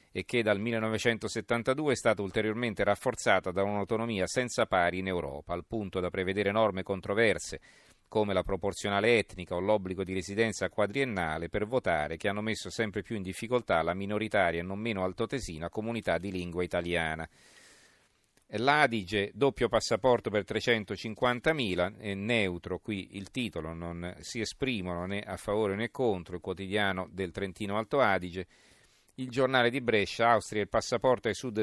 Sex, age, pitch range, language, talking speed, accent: male, 40-59, 95-115 Hz, Italian, 155 wpm, native